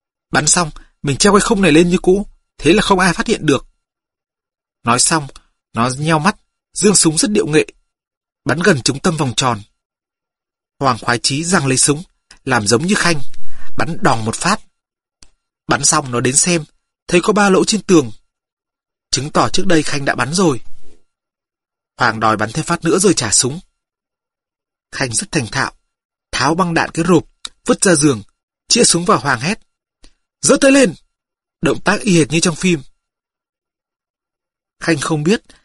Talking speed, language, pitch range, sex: 175 wpm, Vietnamese, 140-190 Hz, male